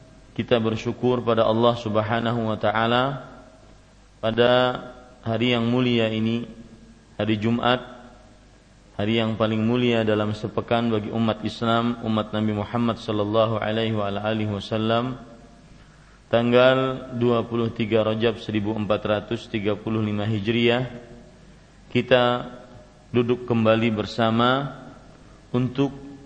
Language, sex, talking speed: Malay, male, 90 wpm